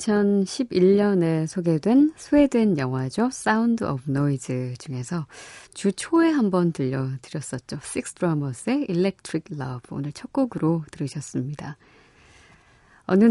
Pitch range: 145-205 Hz